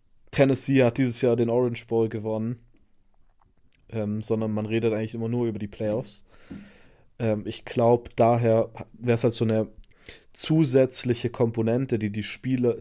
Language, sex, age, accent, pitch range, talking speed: German, male, 20-39, German, 105-120 Hz, 150 wpm